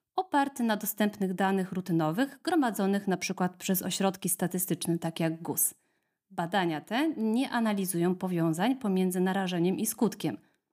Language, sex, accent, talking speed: Polish, female, native, 125 wpm